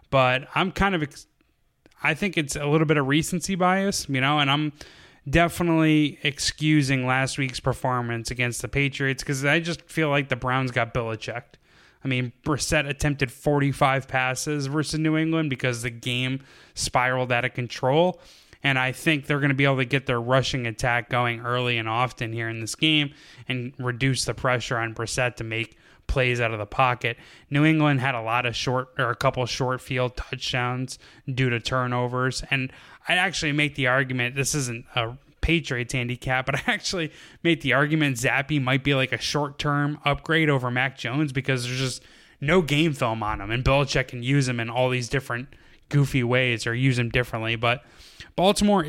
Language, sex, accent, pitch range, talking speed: English, male, American, 120-150 Hz, 190 wpm